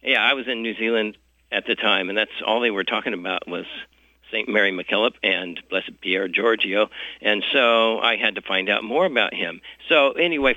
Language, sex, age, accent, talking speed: English, male, 60-79, American, 205 wpm